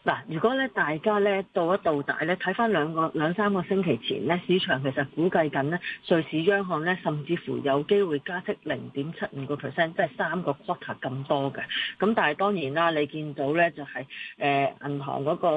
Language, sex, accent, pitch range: Chinese, female, native, 145-190 Hz